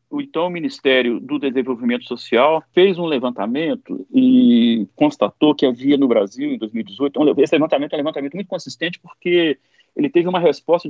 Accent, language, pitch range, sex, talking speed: Brazilian, Portuguese, 140-230 Hz, male, 170 wpm